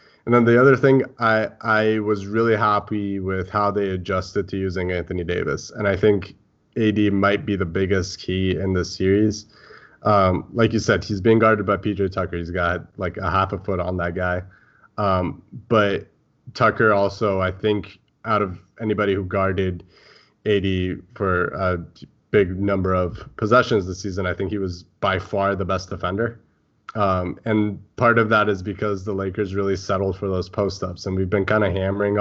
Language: English